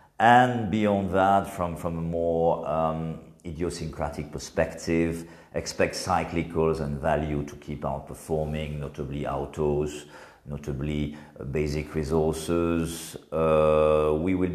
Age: 50-69